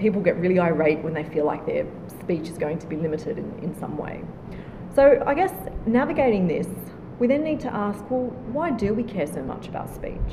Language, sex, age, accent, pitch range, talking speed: English, female, 30-49, Australian, 160-235 Hz, 220 wpm